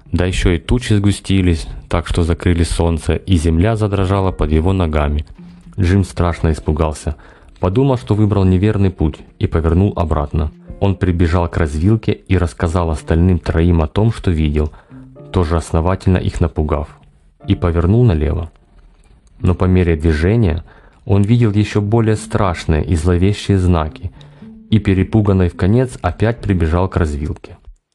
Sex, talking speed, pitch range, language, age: male, 140 wpm, 85-100 Hz, Russian, 30-49